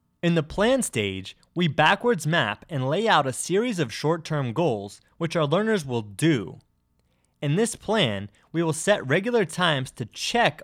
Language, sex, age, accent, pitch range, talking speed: English, male, 20-39, American, 105-170 Hz, 170 wpm